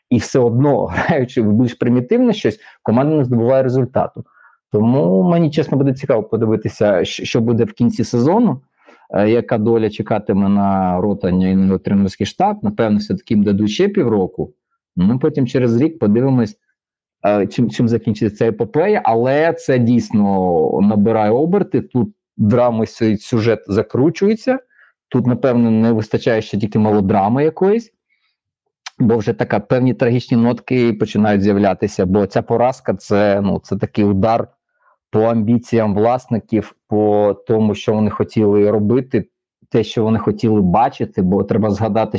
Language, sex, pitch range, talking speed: Ukrainian, male, 105-125 Hz, 140 wpm